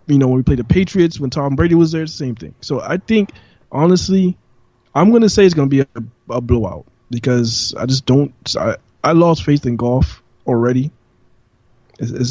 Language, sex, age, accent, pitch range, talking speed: English, male, 20-39, American, 120-160 Hz, 205 wpm